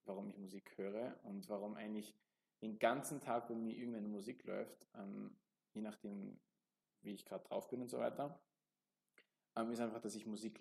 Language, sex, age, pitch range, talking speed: German, male, 20-39, 105-120 Hz, 180 wpm